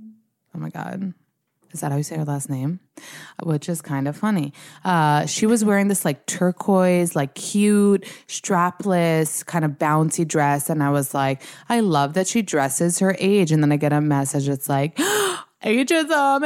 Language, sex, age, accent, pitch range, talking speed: English, female, 20-39, American, 150-220 Hz, 180 wpm